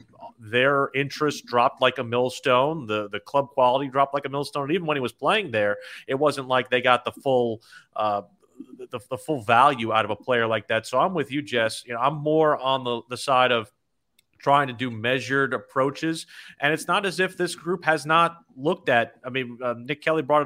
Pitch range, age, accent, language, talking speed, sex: 130-150 Hz, 30-49, American, English, 220 wpm, male